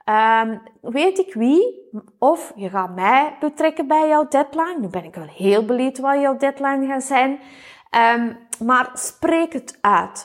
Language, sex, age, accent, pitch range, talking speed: Dutch, female, 30-49, Dutch, 210-280 Hz, 150 wpm